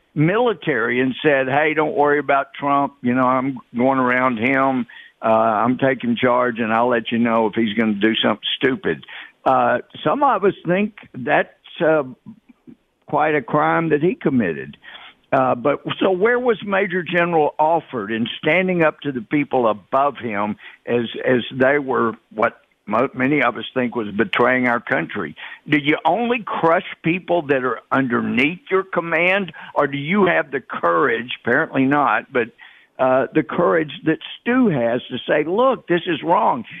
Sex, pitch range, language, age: male, 125-165 Hz, English, 60-79